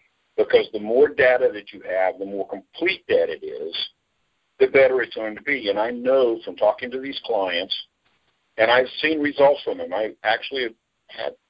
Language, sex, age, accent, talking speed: English, male, 50-69, American, 190 wpm